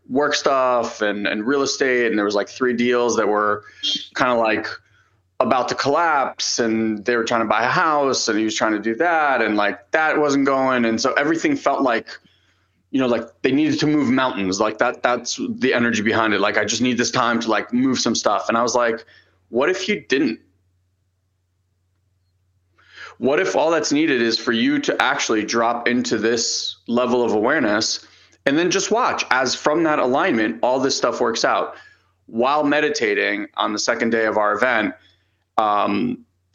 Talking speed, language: 190 wpm, English